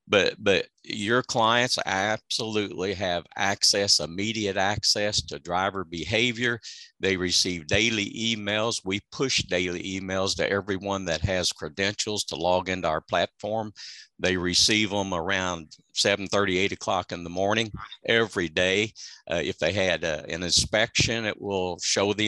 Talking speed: 145 wpm